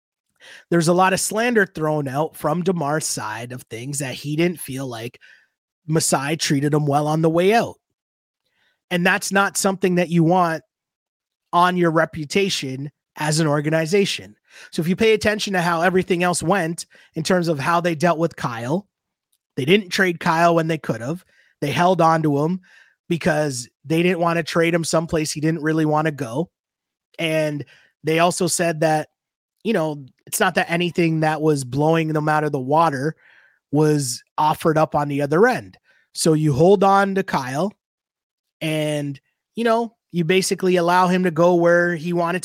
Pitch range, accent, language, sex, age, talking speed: 155-185 Hz, American, English, male, 30-49, 180 wpm